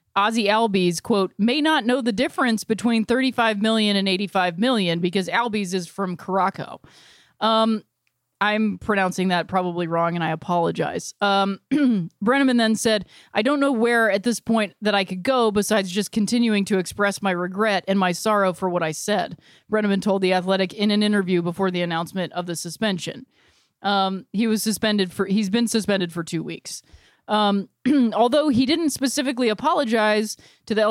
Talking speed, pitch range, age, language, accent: 175 wpm, 185-230 Hz, 30-49, English, American